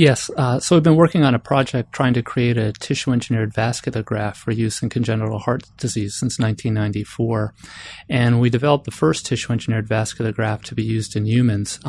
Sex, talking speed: male, 185 wpm